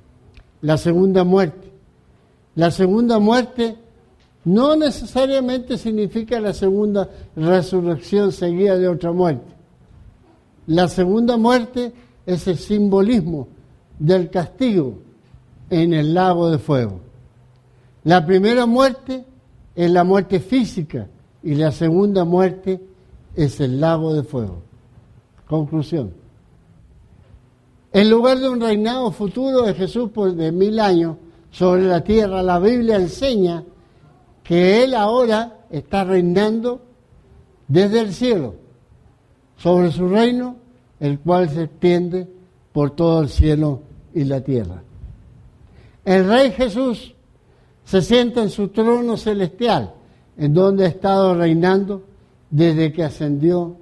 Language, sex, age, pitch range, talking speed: English, male, 60-79, 150-215 Hz, 115 wpm